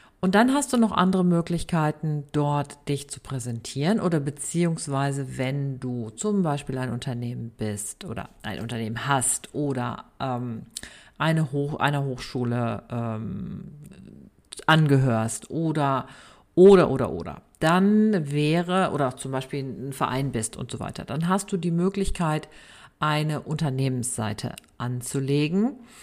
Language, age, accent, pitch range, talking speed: German, 50-69, German, 125-175 Hz, 120 wpm